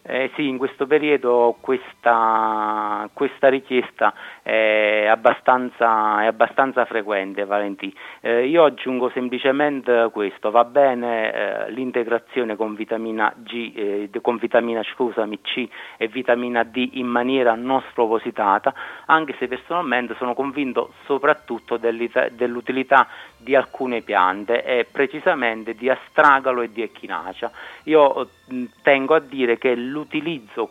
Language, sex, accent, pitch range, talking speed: Italian, male, native, 115-135 Hz, 120 wpm